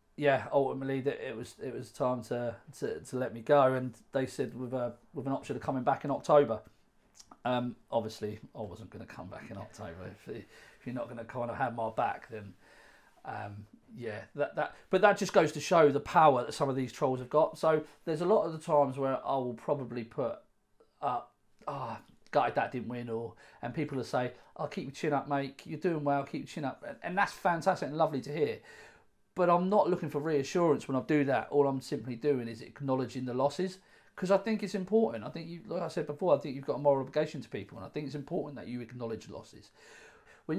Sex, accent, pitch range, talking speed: male, British, 125-155 Hz, 235 wpm